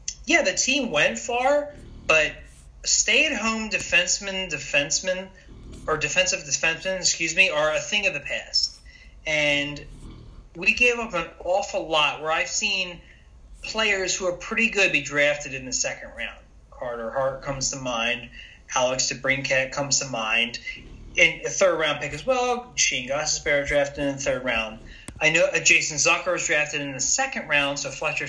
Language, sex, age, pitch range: English, male, 30-49, 140-190 Hz